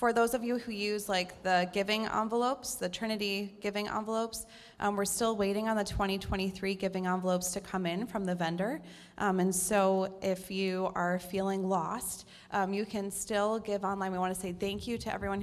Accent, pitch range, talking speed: American, 180-210 Hz, 200 wpm